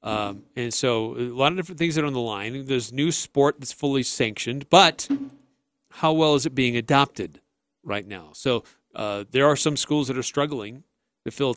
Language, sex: English, male